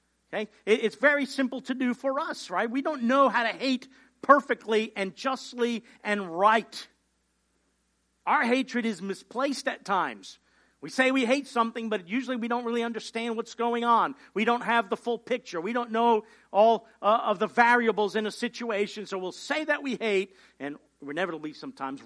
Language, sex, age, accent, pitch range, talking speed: English, male, 50-69, American, 210-265 Hz, 175 wpm